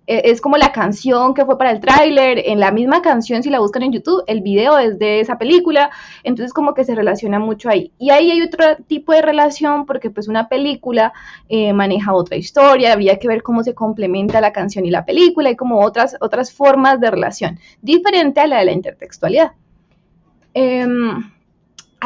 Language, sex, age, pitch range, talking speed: Spanish, female, 20-39, 215-285 Hz, 195 wpm